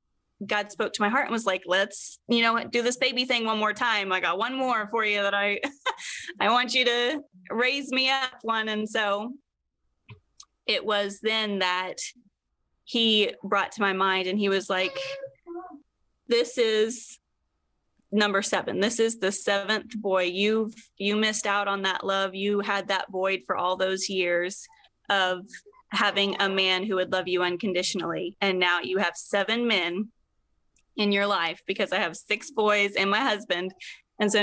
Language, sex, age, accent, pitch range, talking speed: English, female, 20-39, American, 185-220 Hz, 175 wpm